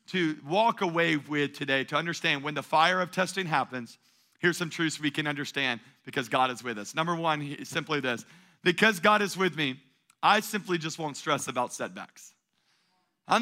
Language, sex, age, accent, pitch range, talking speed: English, male, 40-59, American, 155-205 Hz, 190 wpm